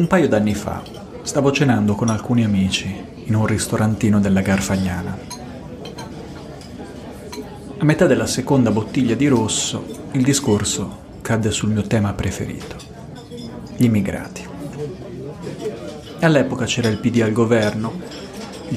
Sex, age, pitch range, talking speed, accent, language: male, 40-59, 105-125 Hz, 120 wpm, native, Italian